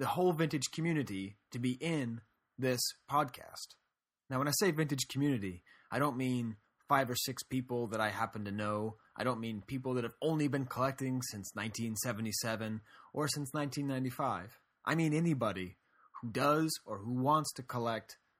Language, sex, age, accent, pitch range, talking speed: English, male, 20-39, American, 110-140 Hz, 165 wpm